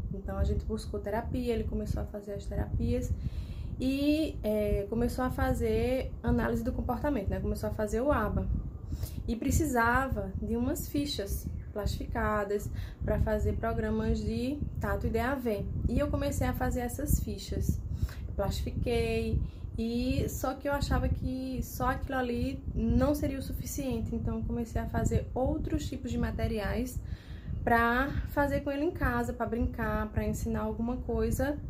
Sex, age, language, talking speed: female, 20-39, Portuguese, 150 wpm